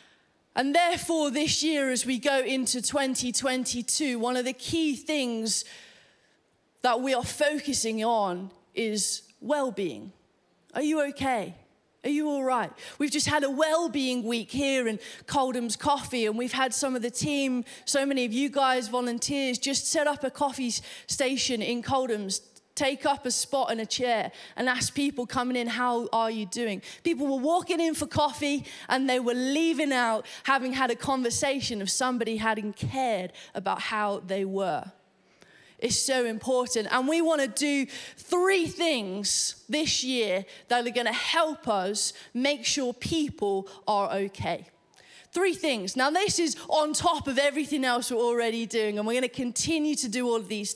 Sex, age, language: female, 30-49, English